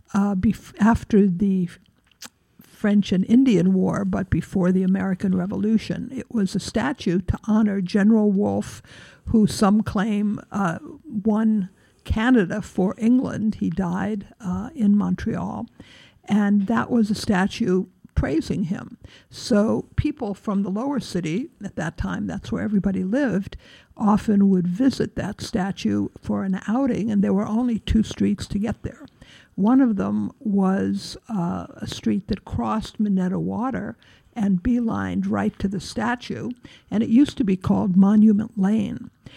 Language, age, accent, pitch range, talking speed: English, 60-79, American, 190-225 Hz, 145 wpm